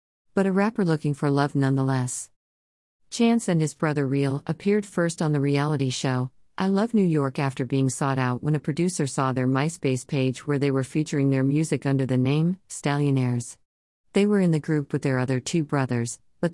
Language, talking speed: English, 195 wpm